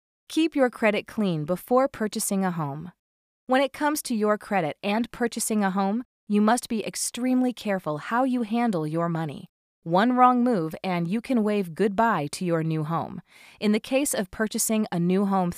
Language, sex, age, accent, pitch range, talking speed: English, female, 30-49, American, 175-230 Hz, 185 wpm